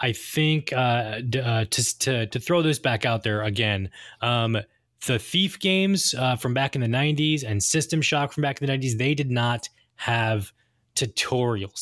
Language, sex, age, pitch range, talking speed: English, male, 20-39, 115-145 Hz, 190 wpm